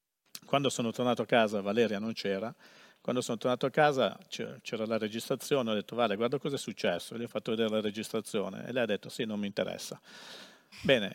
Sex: male